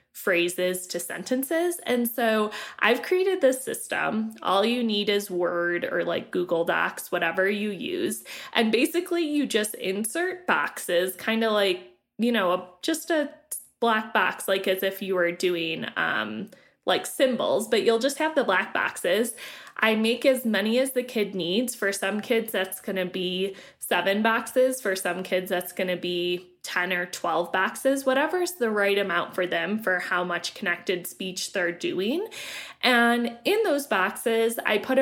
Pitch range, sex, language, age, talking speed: 190-260 Hz, female, English, 20-39, 170 wpm